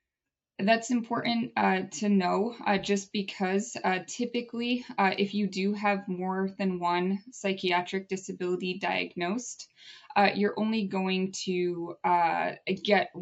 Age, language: 20-39, English